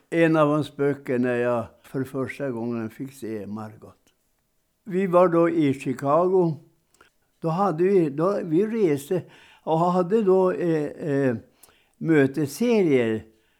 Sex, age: male, 60-79